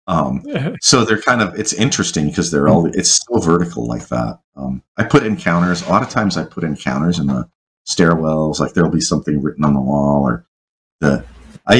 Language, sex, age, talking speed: English, male, 40-59, 210 wpm